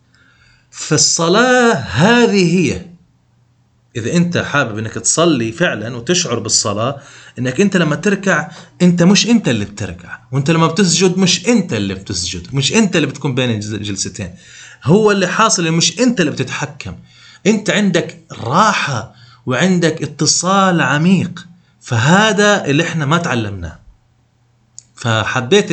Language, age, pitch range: Arabic, 30-49, 115-175 Hz